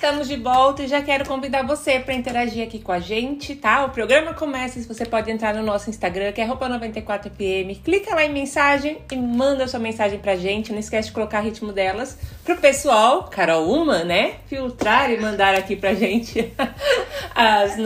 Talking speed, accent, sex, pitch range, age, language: 210 wpm, Brazilian, female, 205-260 Hz, 30-49, Portuguese